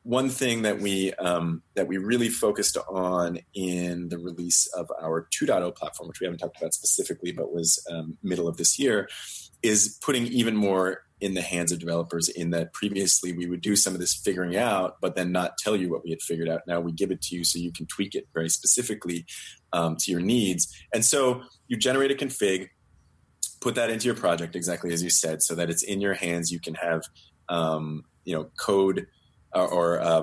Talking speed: 210 wpm